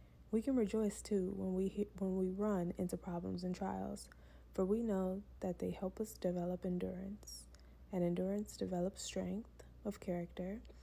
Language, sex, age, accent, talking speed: English, female, 20-39, American, 160 wpm